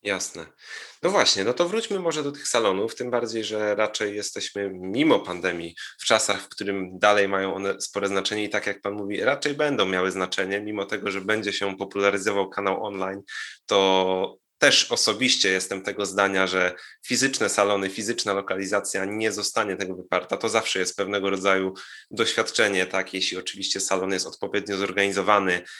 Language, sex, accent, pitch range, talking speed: Polish, male, native, 95-120 Hz, 165 wpm